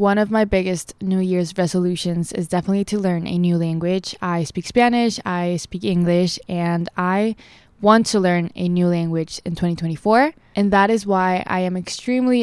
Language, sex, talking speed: English, female, 180 wpm